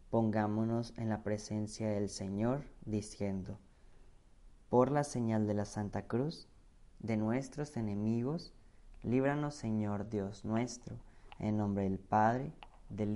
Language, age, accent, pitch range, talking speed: Spanish, 30-49, Mexican, 100-120 Hz, 120 wpm